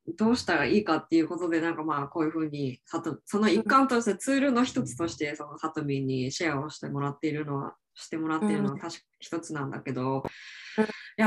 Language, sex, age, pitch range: Japanese, female, 20-39, 150-225 Hz